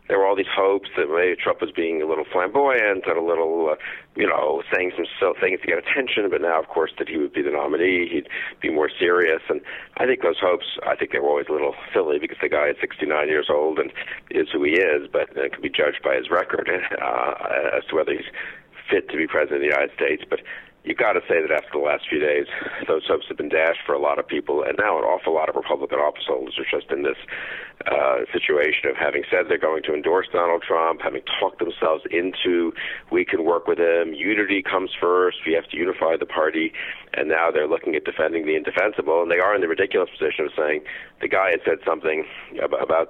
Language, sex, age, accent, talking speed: English, male, 50-69, American, 235 wpm